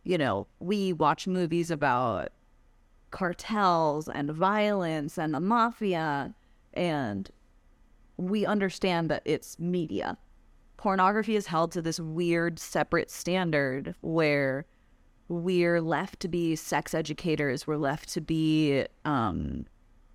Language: English